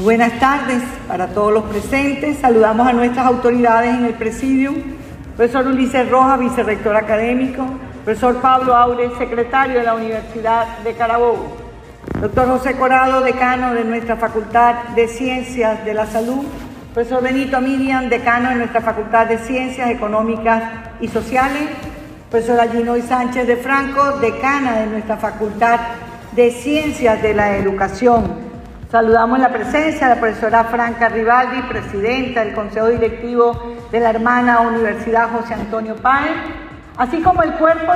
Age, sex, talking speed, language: 50-69, female, 140 wpm, Spanish